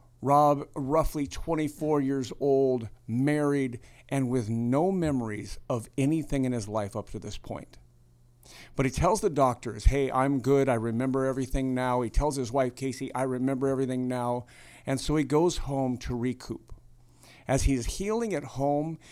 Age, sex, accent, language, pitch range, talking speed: 50-69, male, American, English, 120-145 Hz, 165 wpm